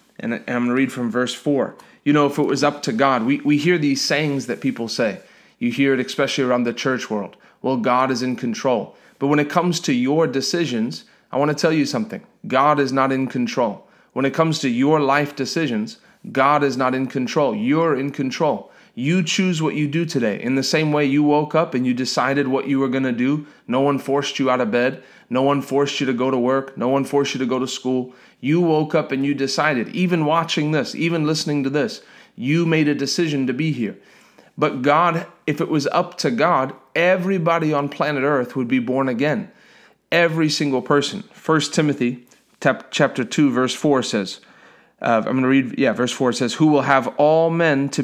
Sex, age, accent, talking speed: male, 30-49, American, 215 wpm